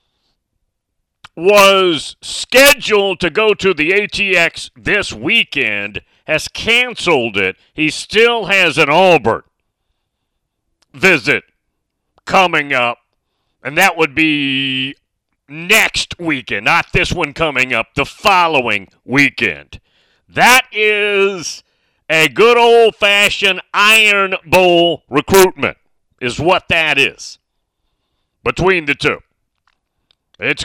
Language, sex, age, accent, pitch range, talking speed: English, male, 40-59, American, 150-200 Hz, 100 wpm